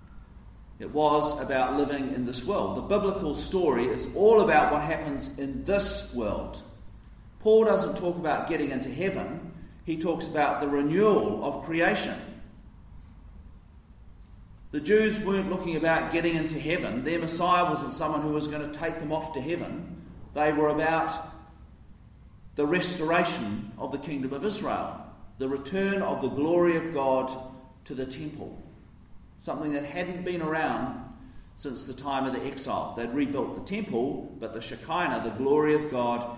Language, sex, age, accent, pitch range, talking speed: English, male, 40-59, Australian, 125-170 Hz, 155 wpm